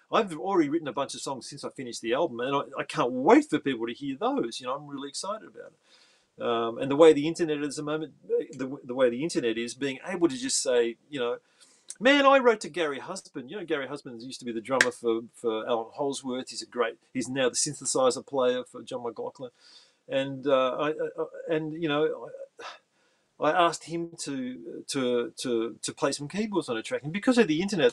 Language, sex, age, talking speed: English, male, 40-59, 230 wpm